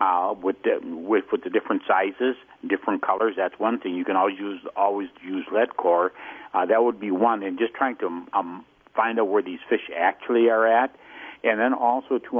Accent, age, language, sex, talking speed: American, 60-79, English, male, 210 wpm